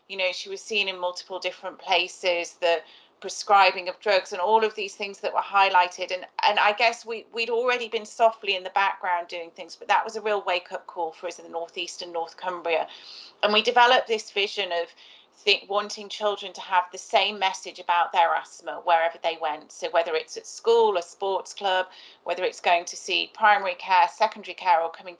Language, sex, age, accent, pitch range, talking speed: English, female, 40-59, British, 175-205 Hz, 210 wpm